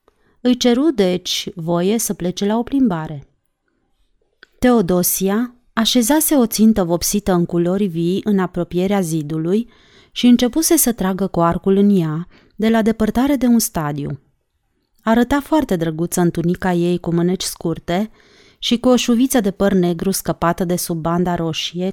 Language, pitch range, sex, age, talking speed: Romanian, 175-225 Hz, female, 30-49, 150 wpm